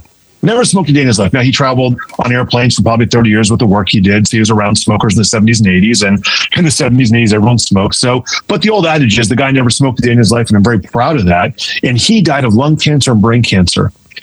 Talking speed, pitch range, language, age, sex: 290 wpm, 115-155 Hz, English, 40-59, male